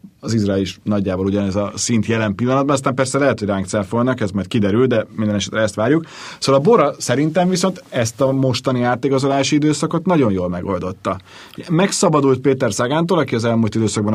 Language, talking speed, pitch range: Hungarian, 180 wpm, 105-130 Hz